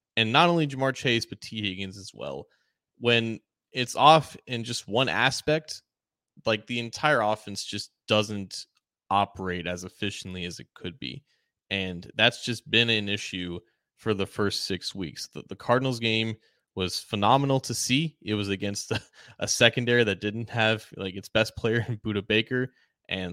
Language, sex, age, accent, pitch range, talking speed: English, male, 20-39, American, 95-120 Hz, 165 wpm